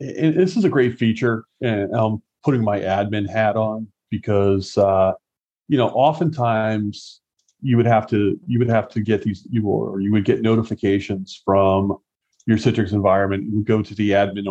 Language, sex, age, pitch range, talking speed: English, male, 40-59, 100-115 Hz, 180 wpm